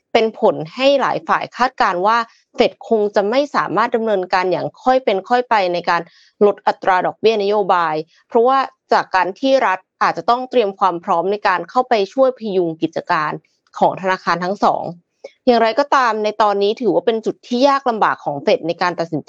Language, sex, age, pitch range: Thai, female, 20-39, 185-245 Hz